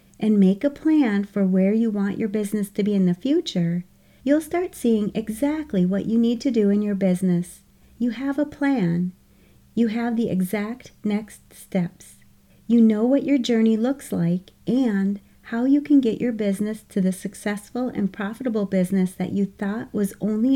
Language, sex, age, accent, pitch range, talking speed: English, female, 40-59, American, 190-250 Hz, 180 wpm